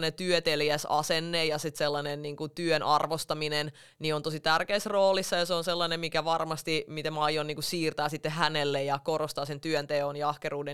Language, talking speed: Finnish, 190 wpm